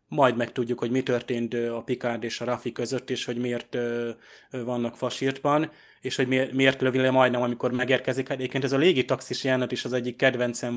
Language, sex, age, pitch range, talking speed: Hungarian, male, 20-39, 120-130 Hz, 190 wpm